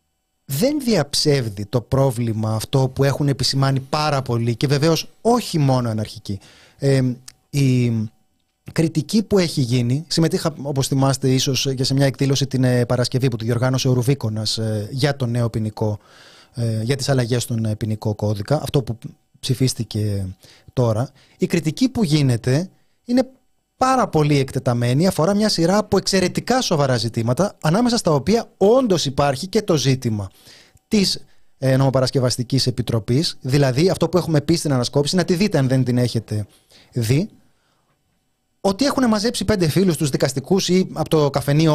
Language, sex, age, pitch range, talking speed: Greek, male, 30-49, 125-165 Hz, 145 wpm